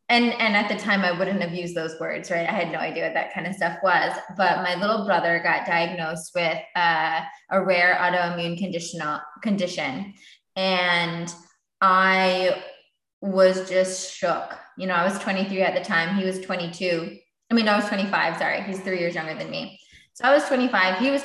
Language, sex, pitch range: English, female, 175-225 Hz